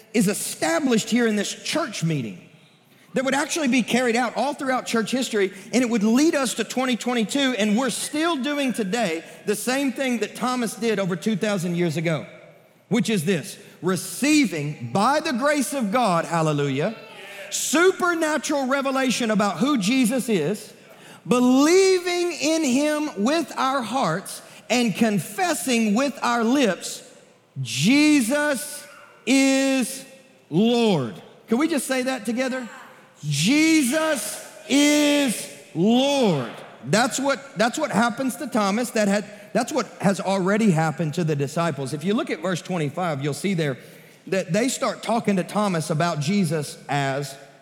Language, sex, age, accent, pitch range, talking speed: English, male, 40-59, American, 190-265 Hz, 140 wpm